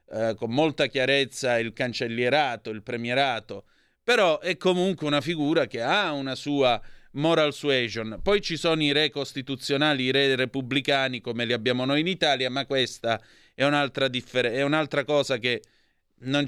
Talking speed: 155 wpm